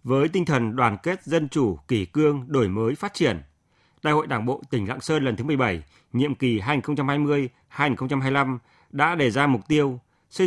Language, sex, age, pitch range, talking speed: Vietnamese, male, 30-49, 120-150 Hz, 185 wpm